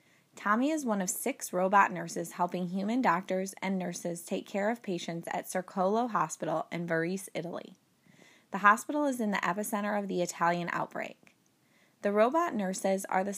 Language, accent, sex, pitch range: English, American, female, 175-220 Hz